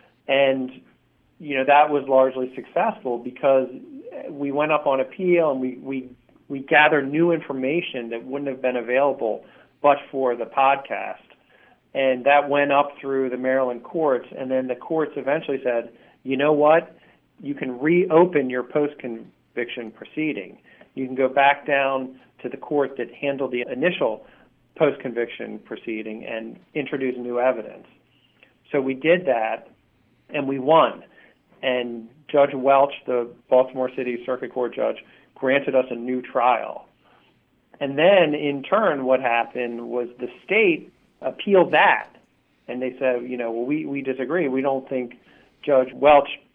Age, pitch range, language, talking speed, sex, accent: 40-59, 125-145 Hz, English, 145 wpm, male, American